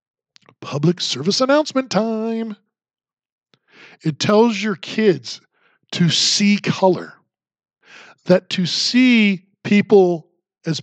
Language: English